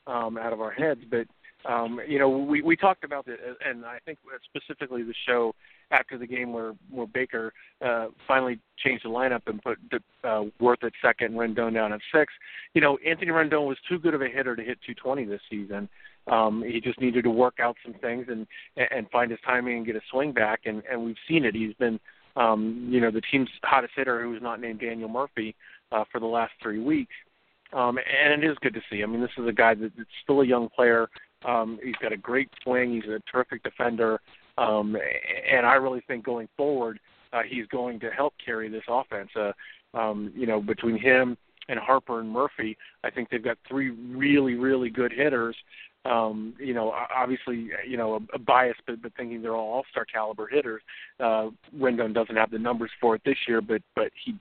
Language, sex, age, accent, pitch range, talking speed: English, male, 50-69, American, 115-130 Hz, 215 wpm